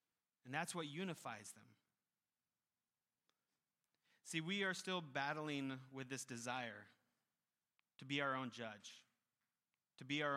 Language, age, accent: English, 30-49, American